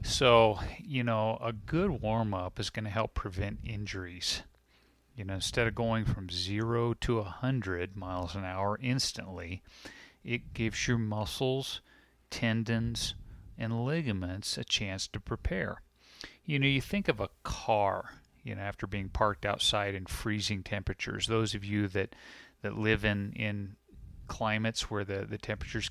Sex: male